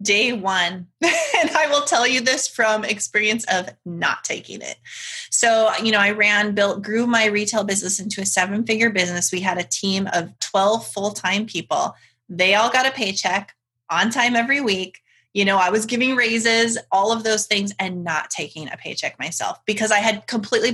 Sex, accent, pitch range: female, American, 190-230 Hz